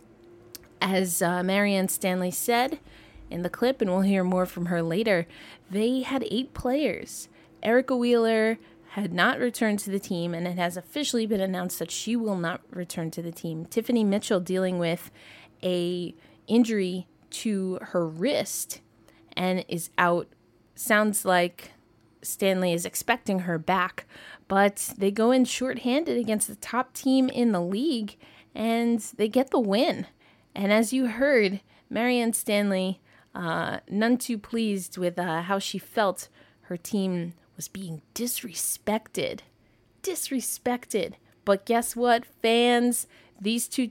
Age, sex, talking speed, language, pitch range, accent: 20-39, female, 140 wpm, English, 180-235 Hz, American